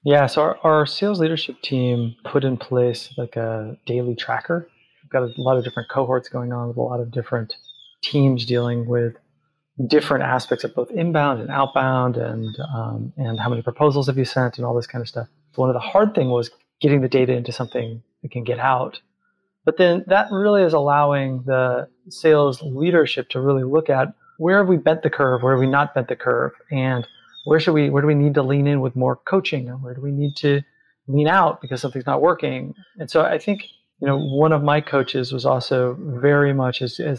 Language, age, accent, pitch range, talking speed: English, 30-49, American, 125-145 Hz, 220 wpm